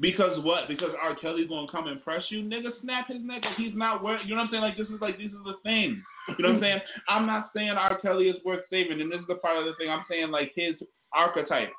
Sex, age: male, 30-49